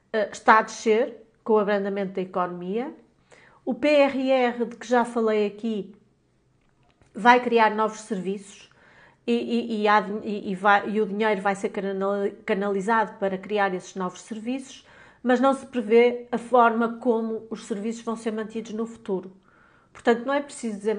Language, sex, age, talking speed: Portuguese, female, 40-59, 145 wpm